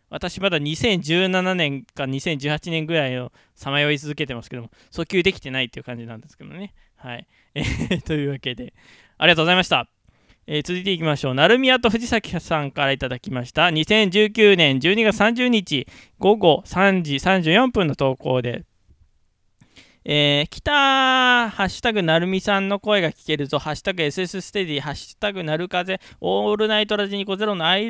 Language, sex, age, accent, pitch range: Japanese, male, 20-39, native, 130-190 Hz